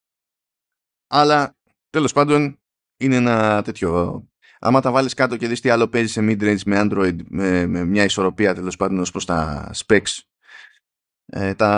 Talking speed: 160 wpm